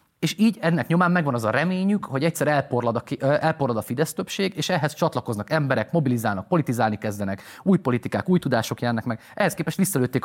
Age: 30-49